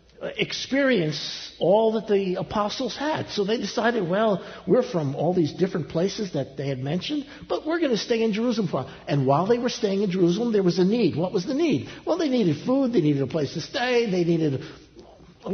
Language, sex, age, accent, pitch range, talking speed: English, male, 60-79, American, 150-210 Hz, 210 wpm